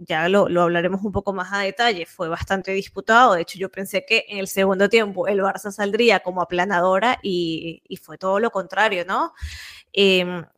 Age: 20-39